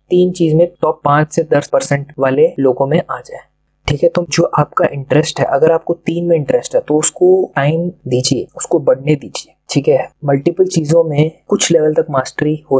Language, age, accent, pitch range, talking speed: Hindi, 20-39, native, 145-170 Hz, 205 wpm